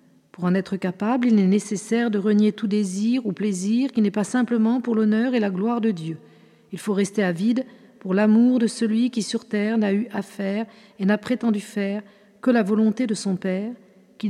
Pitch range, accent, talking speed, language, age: 205-240 Hz, French, 210 wpm, French, 50-69